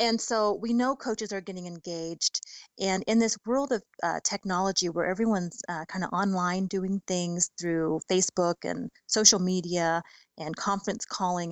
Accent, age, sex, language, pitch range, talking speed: American, 30-49, female, English, 175-210 Hz, 160 wpm